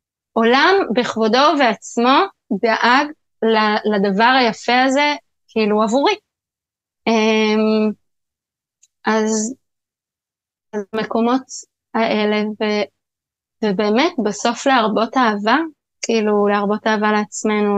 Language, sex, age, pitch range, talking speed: Hebrew, female, 20-39, 210-245 Hz, 70 wpm